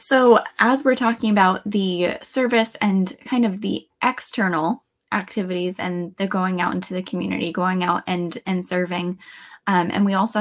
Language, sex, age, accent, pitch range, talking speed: English, female, 10-29, American, 180-215 Hz, 165 wpm